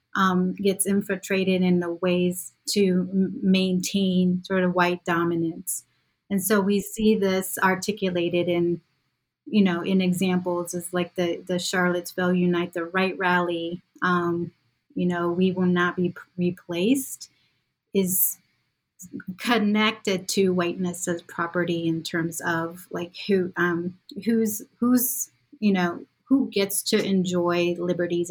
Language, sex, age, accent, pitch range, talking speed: English, female, 30-49, American, 175-195 Hz, 130 wpm